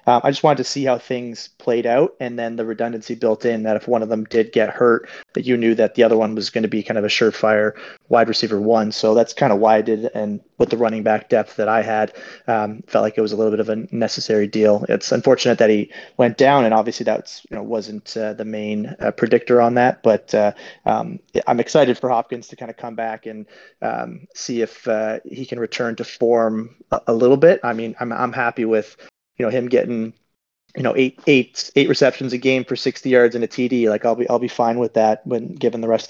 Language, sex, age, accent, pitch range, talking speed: English, male, 30-49, American, 110-125 Hz, 255 wpm